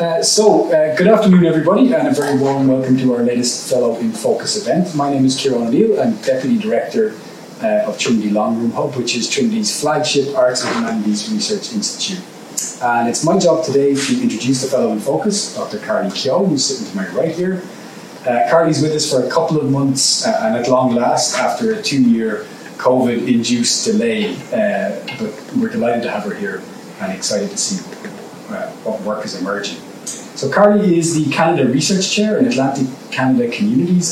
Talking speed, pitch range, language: 190 wpm, 135-225 Hz, English